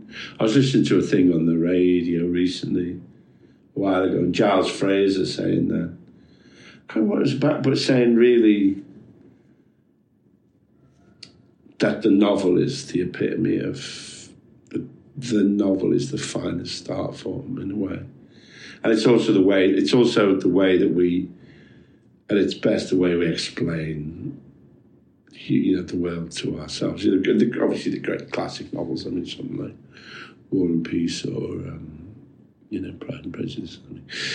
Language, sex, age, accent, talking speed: English, male, 50-69, British, 165 wpm